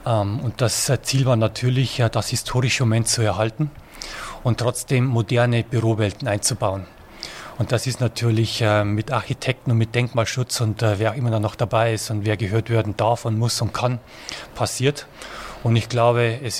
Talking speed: 160 wpm